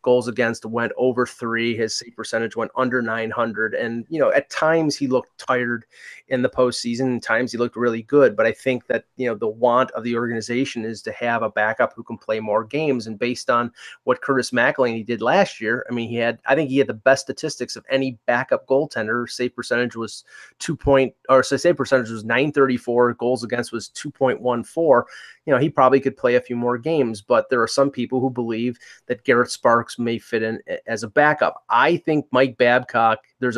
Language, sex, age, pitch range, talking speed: English, male, 30-49, 115-135 Hz, 215 wpm